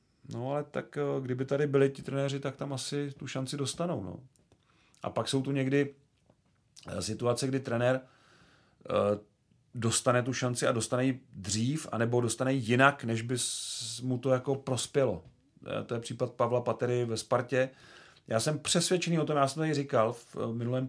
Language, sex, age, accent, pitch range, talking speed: Czech, male, 40-59, native, 125-145 Hz, 165 wpm